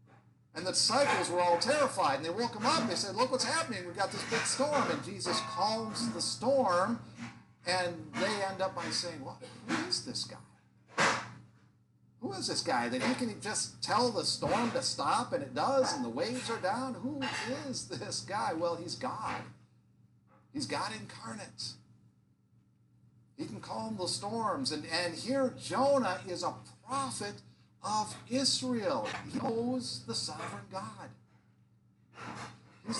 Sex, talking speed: male, 165 wpm